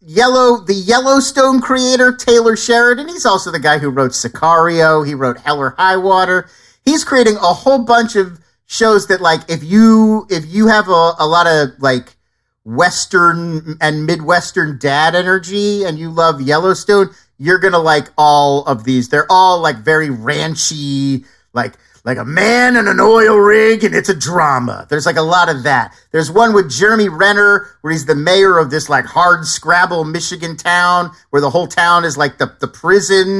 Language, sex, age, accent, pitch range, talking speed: English, male, 40-59, American, 155-200 Hz, 180 wpm